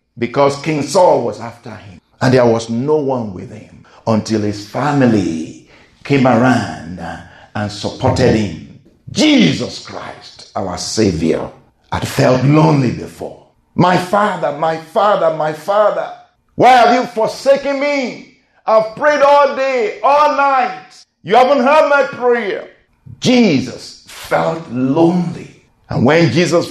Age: 50-69